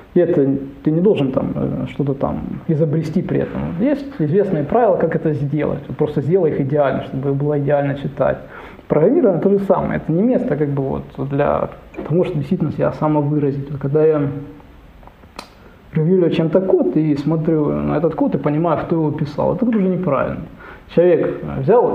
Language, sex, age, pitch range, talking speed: Ukrainian, male, 20-39, 140-160 Hz, 170 wpm